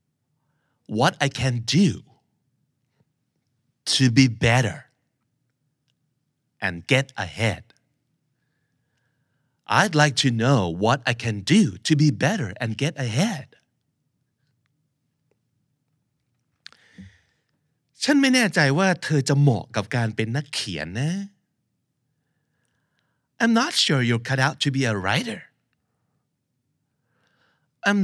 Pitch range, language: 125-150 Hz, Thai